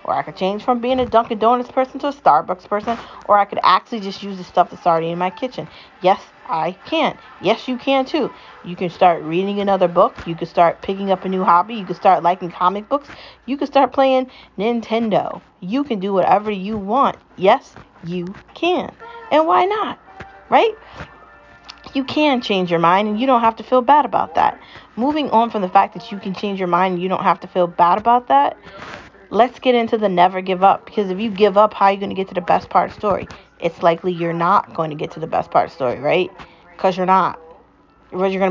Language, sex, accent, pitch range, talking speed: English, female, American, 180-240 Hz, 235 wpm